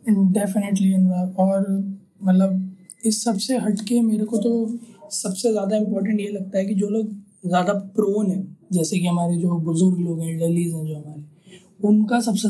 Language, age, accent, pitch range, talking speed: Hindi, 20-39, native, 170-195 Hz, 175 wpm